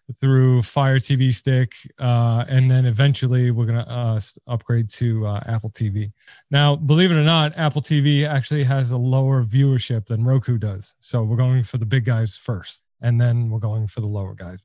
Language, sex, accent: English, male, American